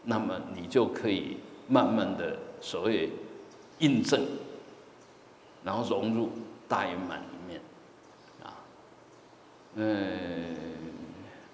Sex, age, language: male, 50-69, Chinese